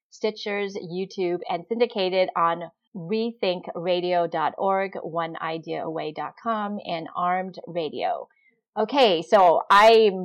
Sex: female